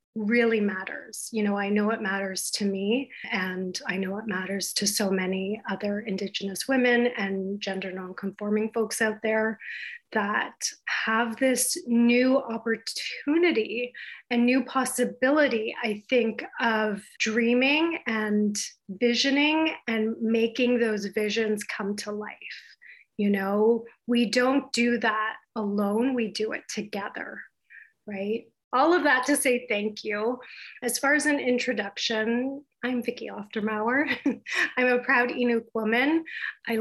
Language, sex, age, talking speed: English, female, 30-49, 130 wpm